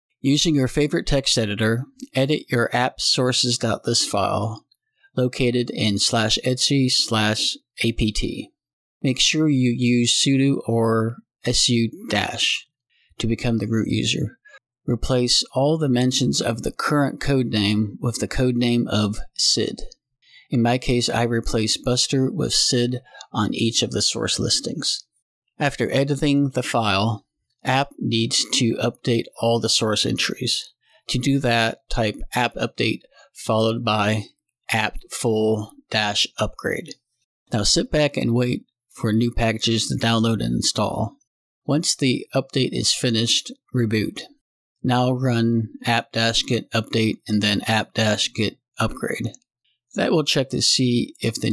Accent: American